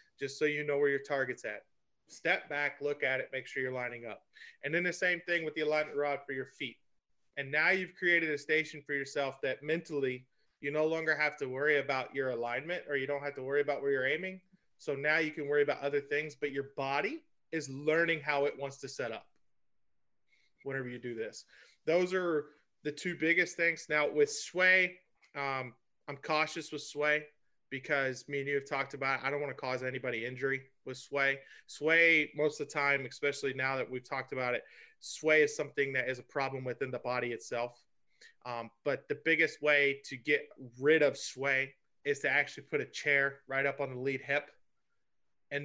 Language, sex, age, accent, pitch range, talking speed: English, male, 30-49, American, 135-155 Hz, 210 wpm